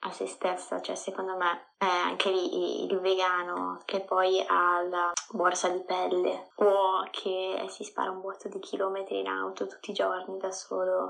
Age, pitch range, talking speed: 20-39, 175-195 Hz, 185 wpm